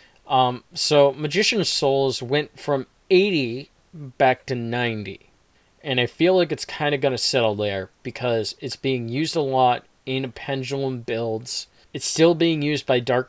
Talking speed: 165 wpm